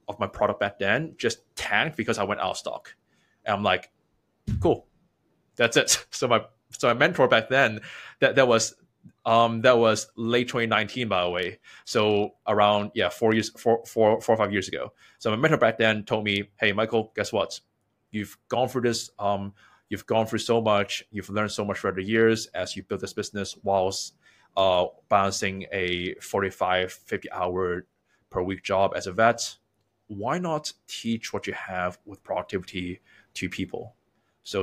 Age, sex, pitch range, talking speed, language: 20-39, male, 95-115 Hz, 185 wpm, English